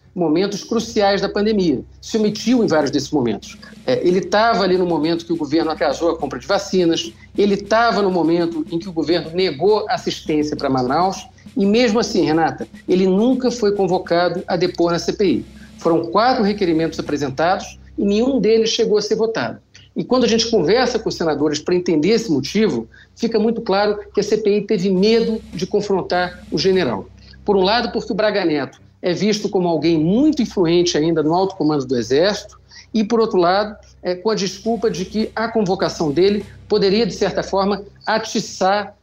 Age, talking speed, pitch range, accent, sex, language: 50-69, 185 wpm, 170-215 Hz, Brazilian, male, Portuguese